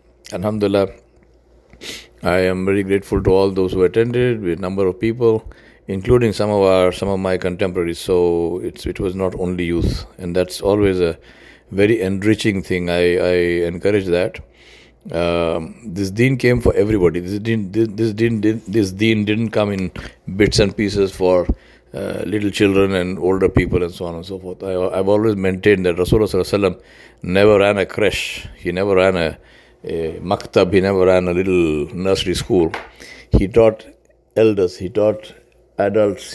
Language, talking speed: English, 175 wpm